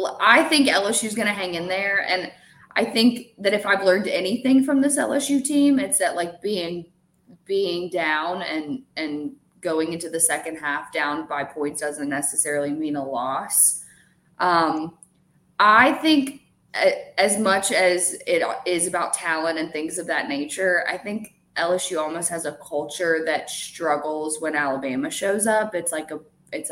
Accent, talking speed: American, 165 wpm